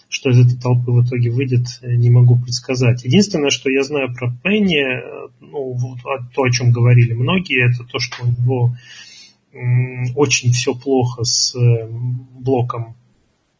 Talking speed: 140 wpm